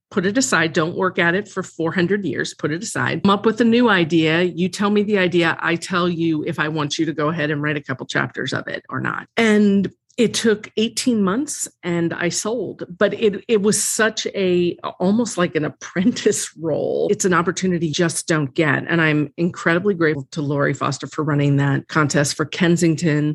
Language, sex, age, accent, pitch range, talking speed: English, female, 40-59, American, 155-195 Hz, 210 wpm